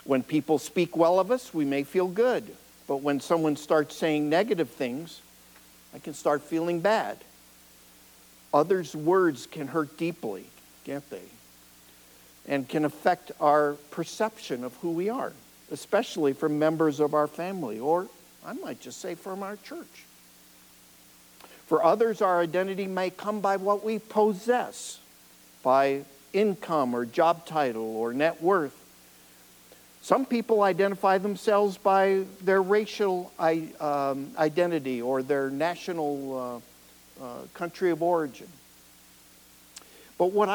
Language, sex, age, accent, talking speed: English, male, 60-79, American, 130 wpm